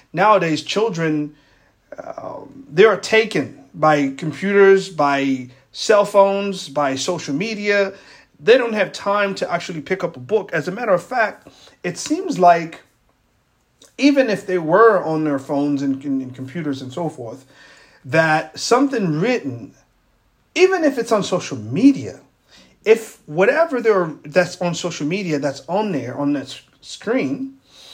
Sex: male